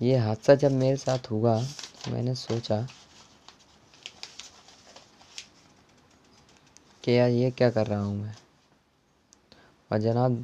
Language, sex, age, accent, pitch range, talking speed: Hindi, female, 20-39, native, 110-130 Hz, 100 wpm